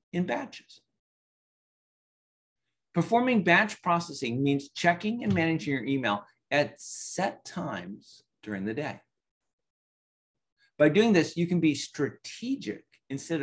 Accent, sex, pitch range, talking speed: American, male, 135-205 Hz, 110 wpm